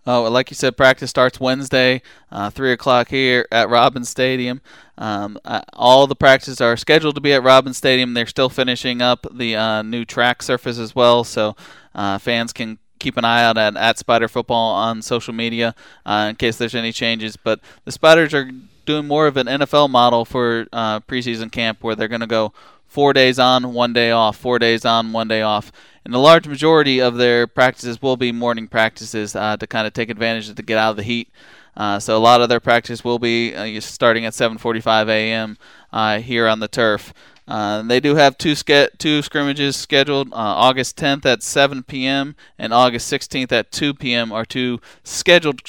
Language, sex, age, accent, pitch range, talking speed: English, male, 20-39, American, 115-130 Hz, 195 wpm